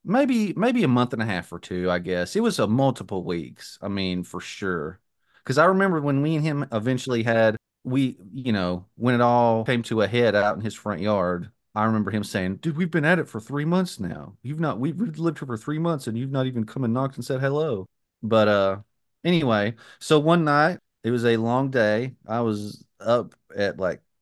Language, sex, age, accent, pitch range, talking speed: English, male, 30-49, American, 105-130 Hz, 225 wpm